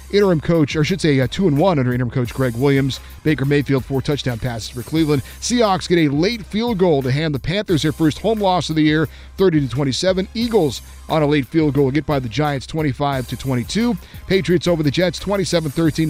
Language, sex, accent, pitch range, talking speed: English, male, American, 135-180 Hz, 200 wpm